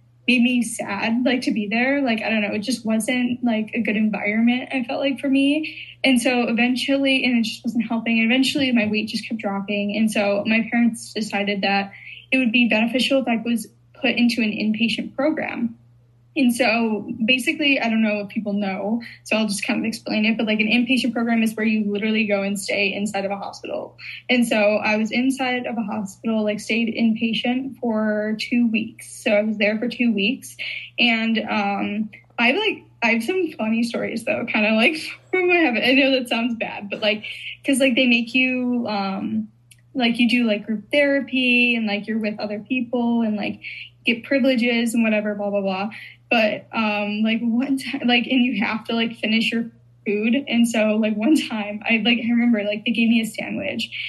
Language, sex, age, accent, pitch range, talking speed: English, female, 10-29, American, 215-245 Hz, 205 wpm